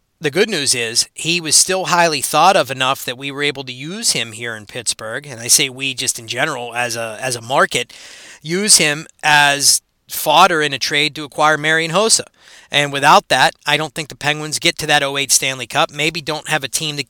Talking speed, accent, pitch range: 225 wpm, American, 135-160 Hz